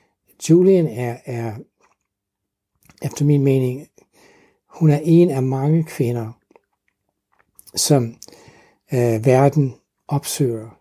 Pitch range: 115-145 Hz